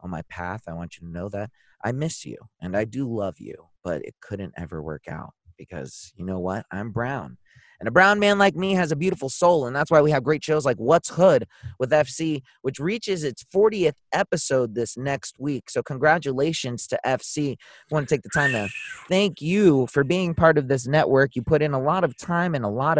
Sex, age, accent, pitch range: male, 30-49, American, 110-150 Hz